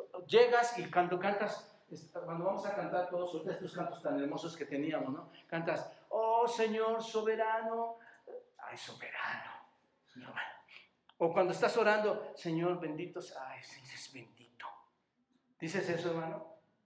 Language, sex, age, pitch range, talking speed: Spanish, male, 60-79, 160-230 Hz, 125 wpm